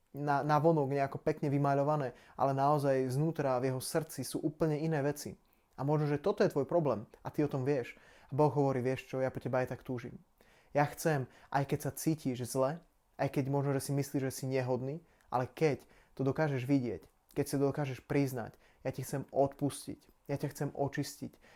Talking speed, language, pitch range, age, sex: 200 wpm, Slovak, 130-150 Hz, 20-39, male